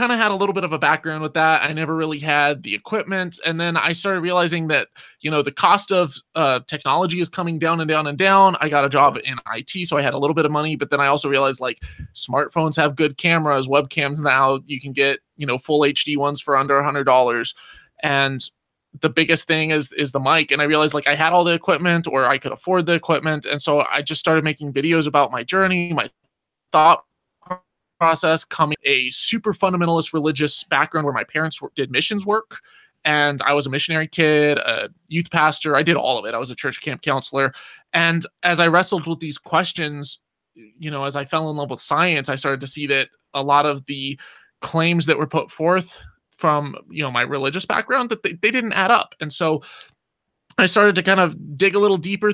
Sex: male